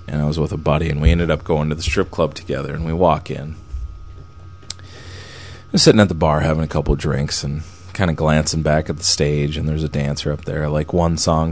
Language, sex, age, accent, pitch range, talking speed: English, male, 30-49, American, 75-90 Hz, 250 wpm